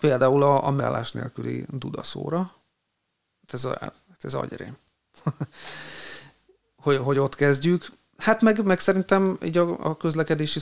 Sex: male